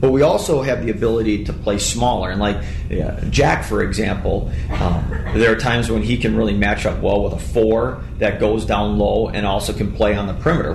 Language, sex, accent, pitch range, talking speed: English, male, American, 90-110 Hz, 220 wpm